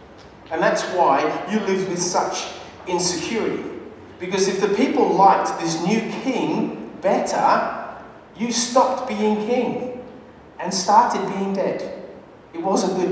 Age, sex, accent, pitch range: 30-49, male, Australian, 150-200 Hz